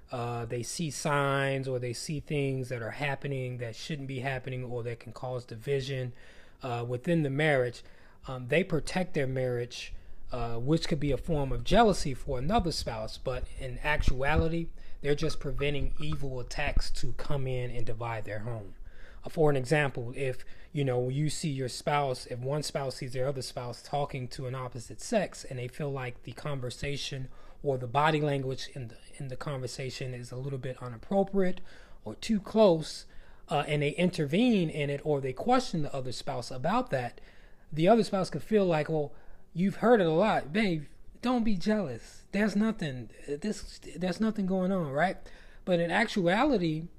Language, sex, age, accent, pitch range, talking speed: English, male, 20-39, American, 125-170 Hz, 180 wpm